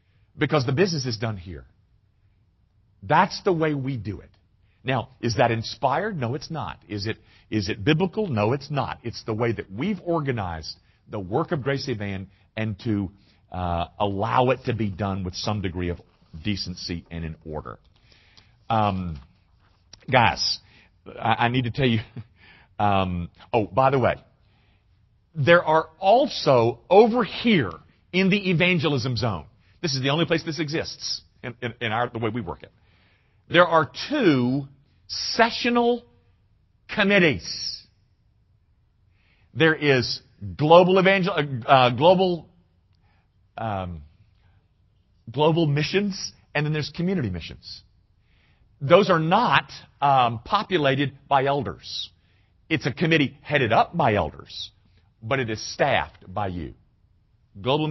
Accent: American